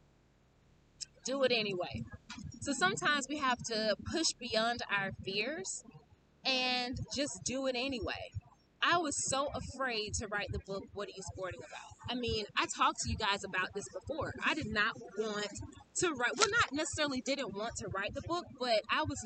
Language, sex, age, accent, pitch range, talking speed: English, female, 20-39, American, 215-285 Hz, 180 wpm